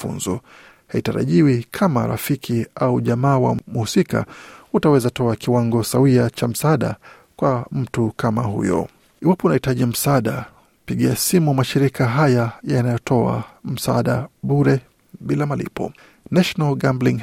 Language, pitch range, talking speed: Swahili, 115-140 Hz, 110 wpm